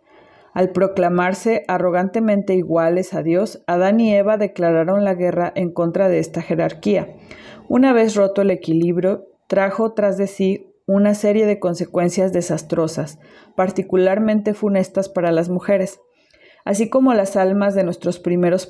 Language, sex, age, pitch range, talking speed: Spanish, female, 40-59, 175-205 Hz, 140 wpm